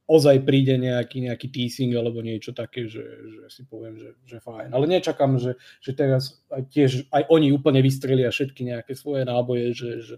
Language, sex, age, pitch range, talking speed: Slovak, male, 20-39, 115-135 Hz, 190 wpm